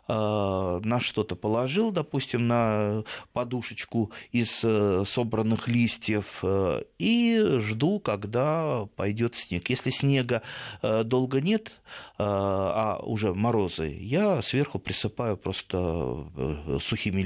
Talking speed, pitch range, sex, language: 90 wpm, 105-130 Hz, male, Russian